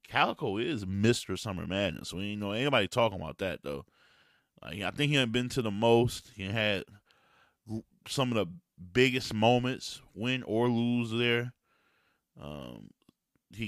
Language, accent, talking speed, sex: English, American, 150 wpm, male